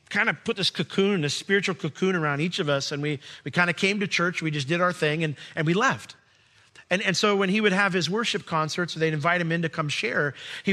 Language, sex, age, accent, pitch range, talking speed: English, male, 40-59, American, 135-180 Hz, 270 wpm